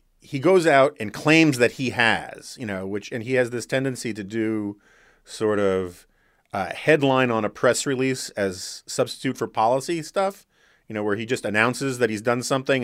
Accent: American